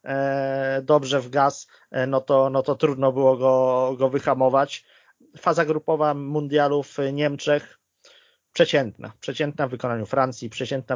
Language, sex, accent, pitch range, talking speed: Polish, male, native, 125-150 Hz, 115 wpm